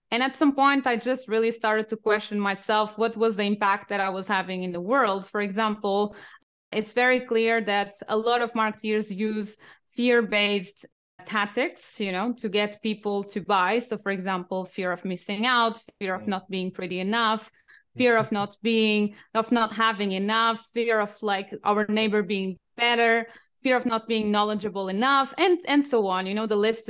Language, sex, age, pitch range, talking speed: English, female, 20-39, 205-235 Hz, 185 wpm